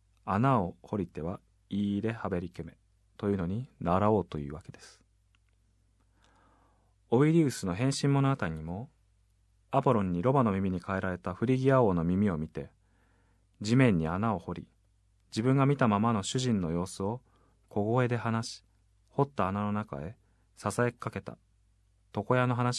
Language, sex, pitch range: Japanese, male, 95-120 Hz